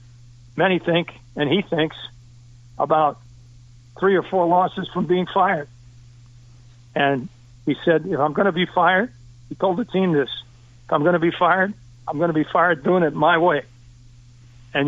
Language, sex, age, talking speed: English, male, 60-79, 175 wpm